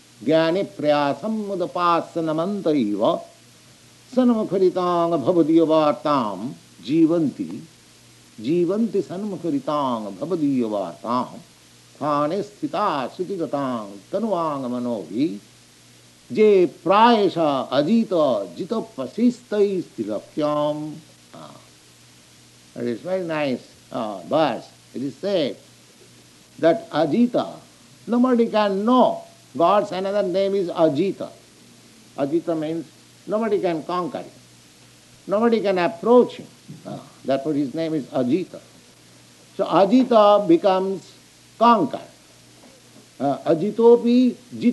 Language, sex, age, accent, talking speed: English, male, 60-79, Indian, 85 wpm